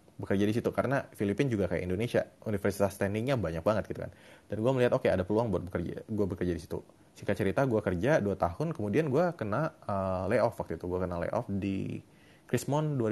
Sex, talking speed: male, 205 wpm